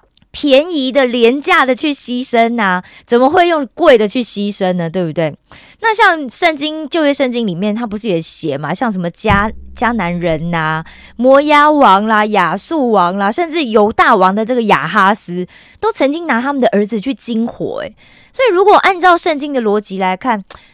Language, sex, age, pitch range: Korean, female, 20-39, 185-275 Hz